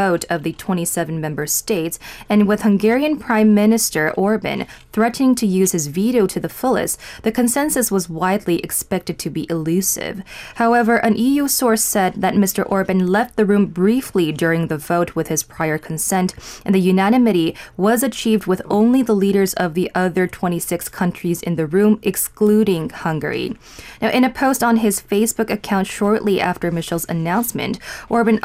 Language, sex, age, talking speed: English, female, 20-39, 165 wpm